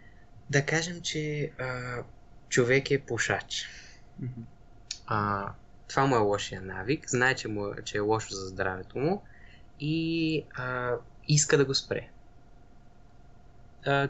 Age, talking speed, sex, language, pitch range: 20-39, 125 wpm, male, Bulgarian, 105-140 Hz